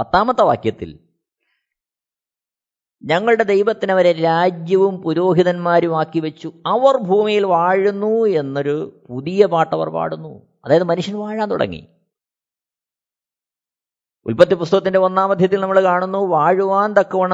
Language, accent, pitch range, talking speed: Malayalam, native, 155-200 Hz, 85 wpm